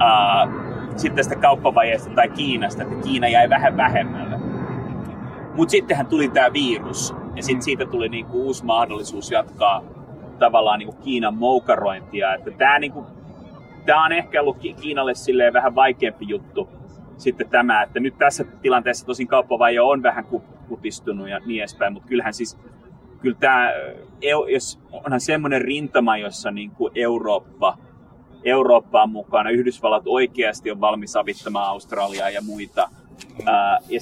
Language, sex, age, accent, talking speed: Finnish, male, 30-49, native, 125 wpm